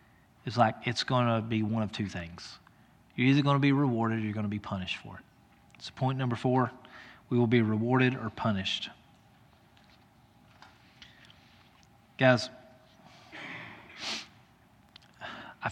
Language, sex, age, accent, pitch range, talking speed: English, male, 30-49, American, 115-135 Hz, 125 wpm